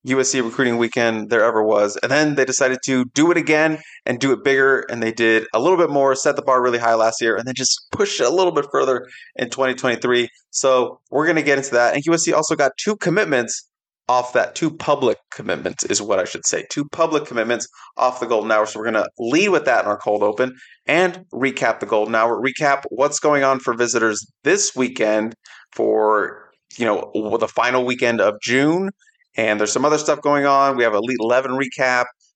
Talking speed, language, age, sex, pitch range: 215 wpm, English, 20-39, male, 115-140 Hz